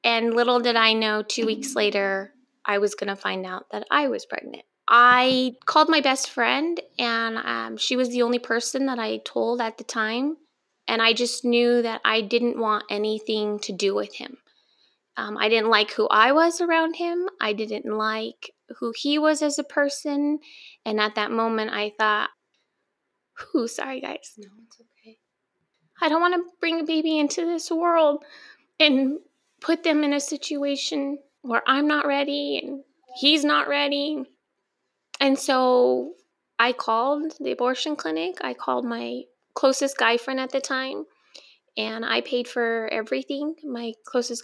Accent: American